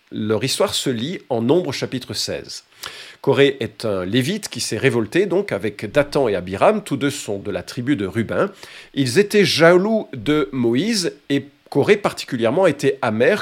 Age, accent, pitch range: 50-69, French, 115-175 Hz